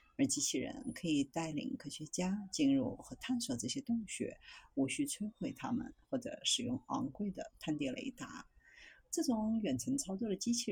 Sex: female